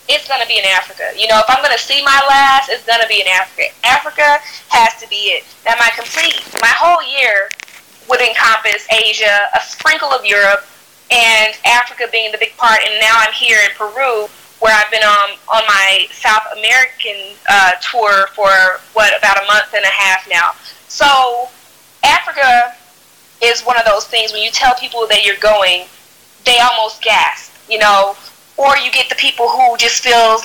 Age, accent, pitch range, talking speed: 20-39, American, 215-265 Hz, 190 wpm